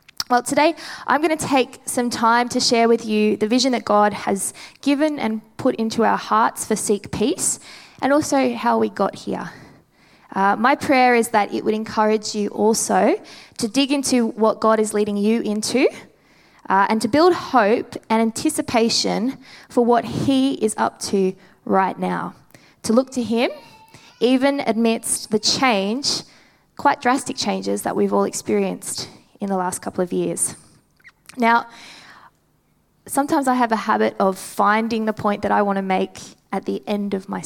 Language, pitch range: English, 205-260 Hz